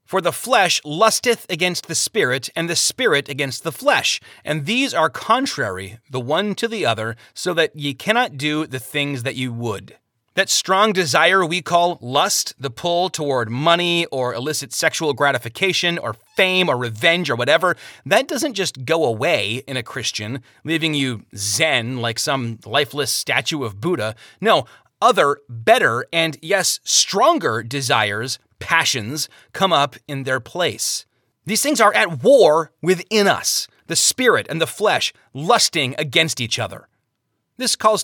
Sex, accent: male, American